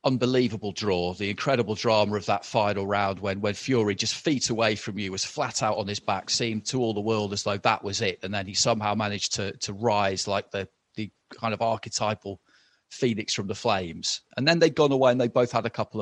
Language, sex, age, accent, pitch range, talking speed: English, male, 30-49, British, 105-130 Hz, 230 wpm